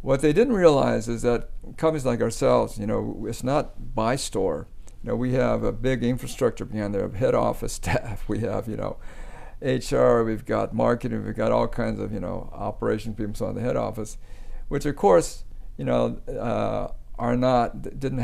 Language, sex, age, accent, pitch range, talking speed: English, male, 60-79, American, 105-130 Hz, 190 wpm